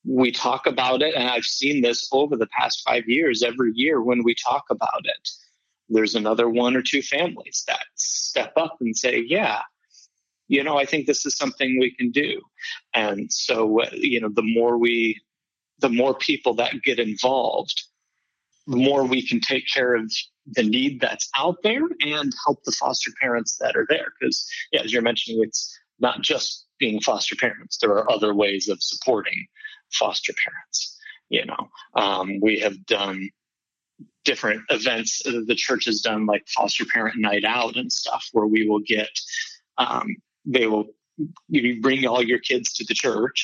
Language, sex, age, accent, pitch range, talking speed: English, male, 30-49, American, 110-160 Hz, 175 wpm